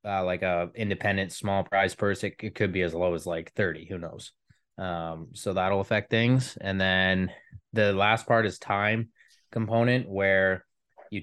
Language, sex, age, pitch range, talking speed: English, male, 20-39, 95-115 Hz, 175 wpm